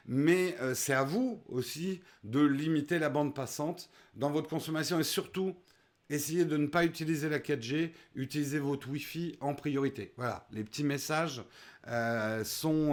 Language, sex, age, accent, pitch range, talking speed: French, male, 50-69, French, 135-175 Hz, 160 wpm